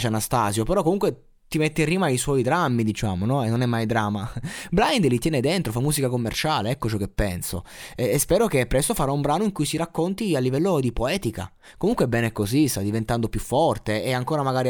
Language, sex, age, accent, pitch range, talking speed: Italian, male, 20-39, native, 110-140 Hz, 220 wpm